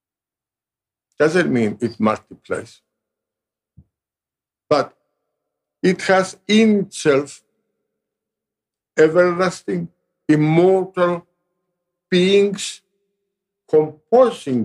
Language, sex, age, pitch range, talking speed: English, male, 60-79, 120-190 Hz, 55 wpm